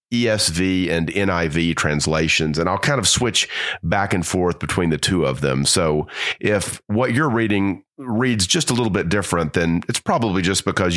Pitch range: 85-125 Hz